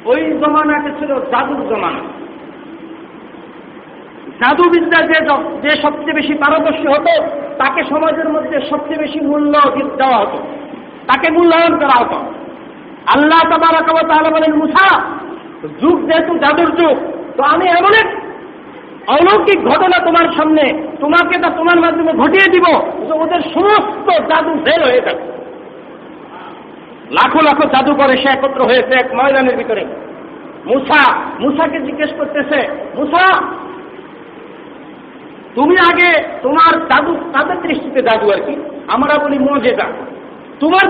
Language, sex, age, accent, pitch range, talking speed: Bengali, male, 50-69, native, 280-335 Hz, 105 wpm